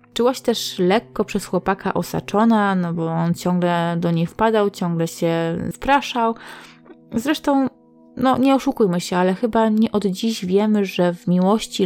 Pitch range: 170-220 Hz